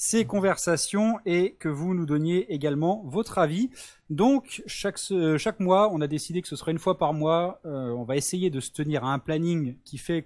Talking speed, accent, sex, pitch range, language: 210 wpm, French, male, 130-185 Hz, French